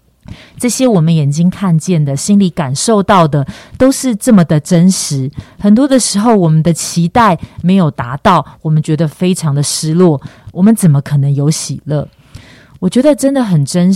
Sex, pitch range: female, 145-190 Hz